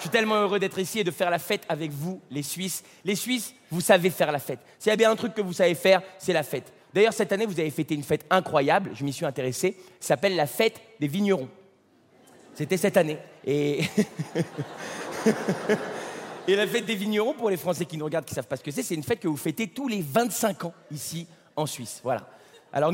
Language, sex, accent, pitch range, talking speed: French, male, French, 165-230 Hz, 240 wpm